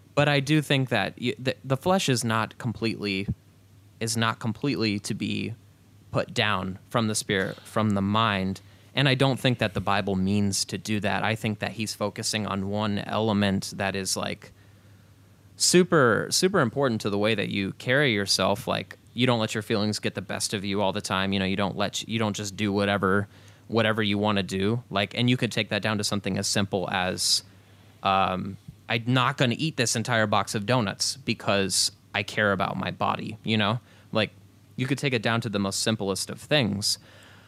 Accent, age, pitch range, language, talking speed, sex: American, 20-39, 100-115 Hz, English, 210 wpm, male